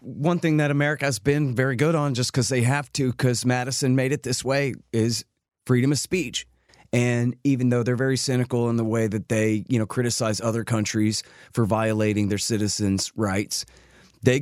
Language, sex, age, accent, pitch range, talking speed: English, male, 30-49, American, 110-140 Hz, 190 wpm